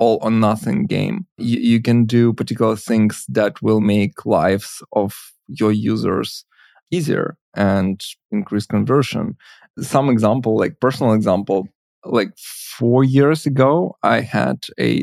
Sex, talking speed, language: male, 130 wpm, English